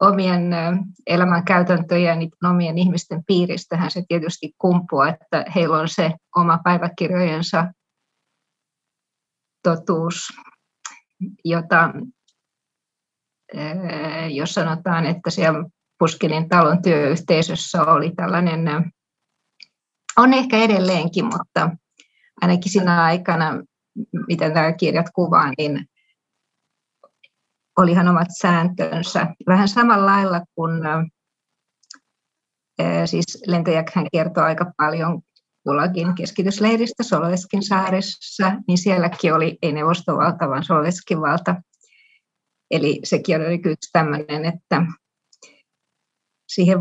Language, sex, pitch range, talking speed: Finnish, female, 165-190 Hz, 90 wpm